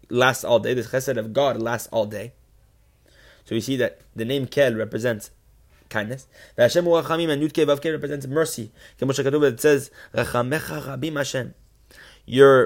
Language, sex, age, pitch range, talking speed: English, male, 20-39, 110-140 Hz, 130 wpm